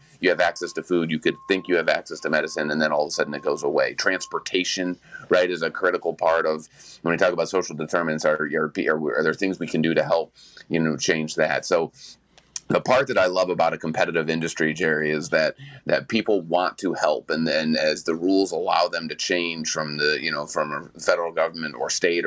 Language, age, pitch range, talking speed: English, 30-49, 80-95 Hz, 235 wpm